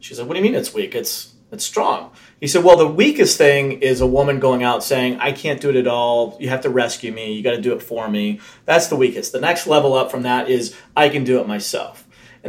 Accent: American